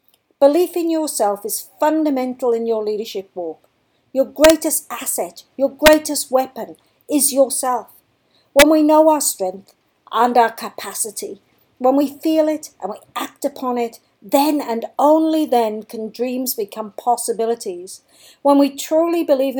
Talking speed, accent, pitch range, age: 140 wpm, British, 210-285 Hz, 50-69